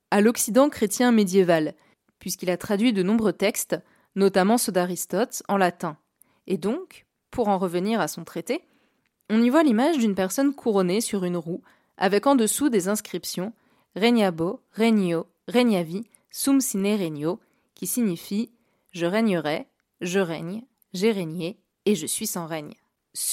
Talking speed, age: 155 wpm, 20-39